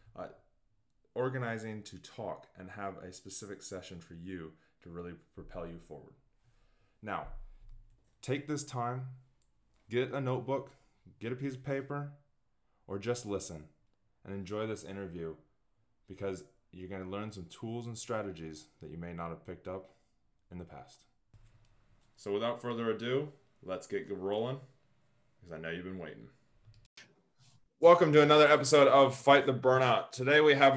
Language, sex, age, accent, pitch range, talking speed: English, male, 20-39, American, 95-130 Hz, 150 wpm